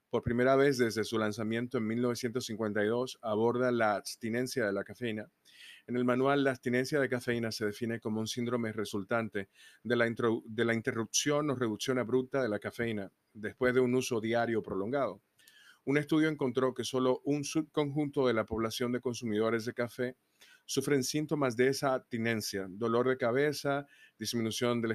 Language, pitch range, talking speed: Spanish, 110-130 Hz, 165 wpm